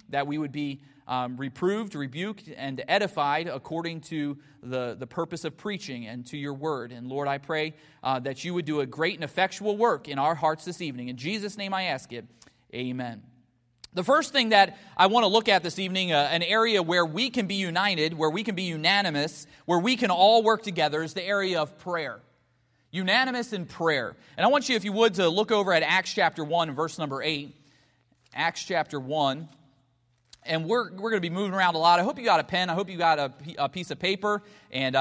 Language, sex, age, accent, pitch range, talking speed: English, male, 30-49, American, 145-195 Hz, 225 wpm